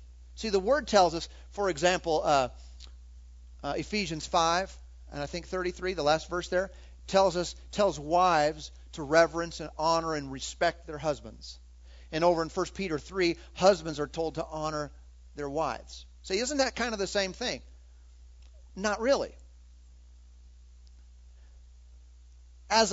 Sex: male